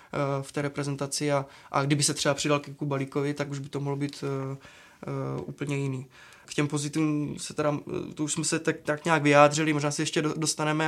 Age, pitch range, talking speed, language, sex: 20-39, 140-155 Hz, 205 wpm, Czech, male